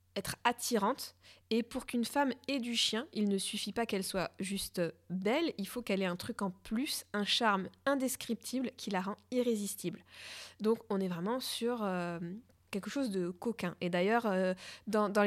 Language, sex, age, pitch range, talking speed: French, female, 20-39, 190-230 Hz, 185 wpm